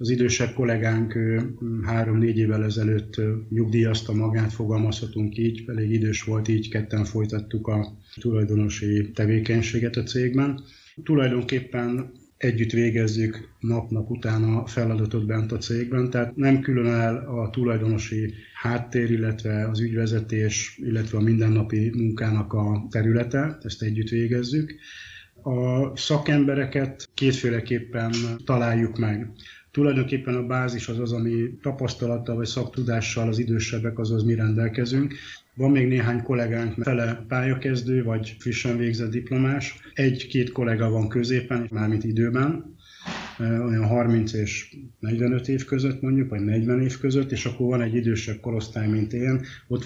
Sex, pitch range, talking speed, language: male, 110-125 Hz, 130 wpm, Hungarian